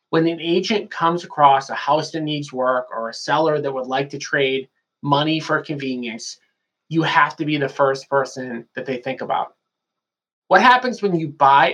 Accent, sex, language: American, male, English